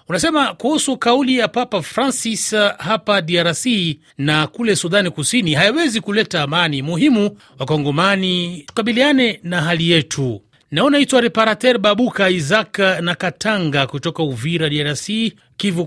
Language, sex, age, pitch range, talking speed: Swahili, male, 30-49, 160-195 Hz, 125 wpm